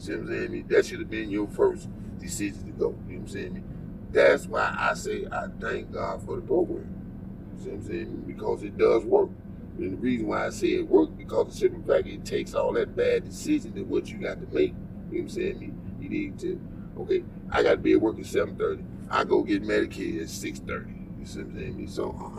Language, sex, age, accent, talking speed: English, male, 30-49, American, 250 wpm